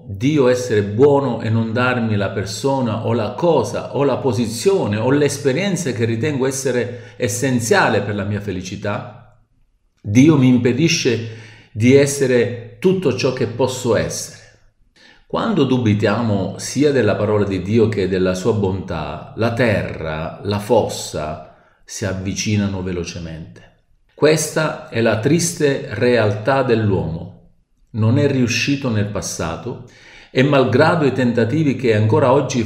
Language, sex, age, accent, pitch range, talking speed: Italian, male, 50-69, native, 105-130 Hz, 130 wpm